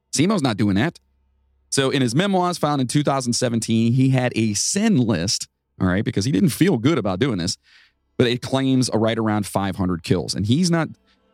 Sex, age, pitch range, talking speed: male, 40-59, 95-130 Hz, 195 wpm